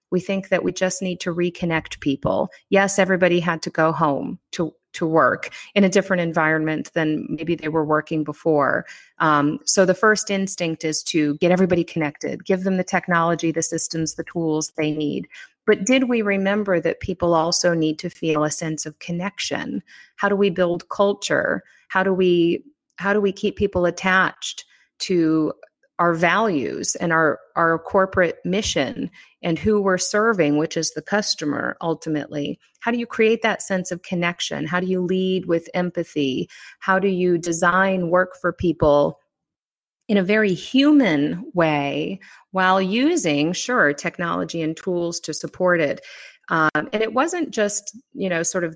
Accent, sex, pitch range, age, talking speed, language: American, female, 160-195 Hz, 30-49, 170 wpm, English